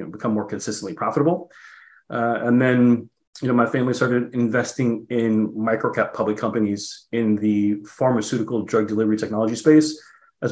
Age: 30-49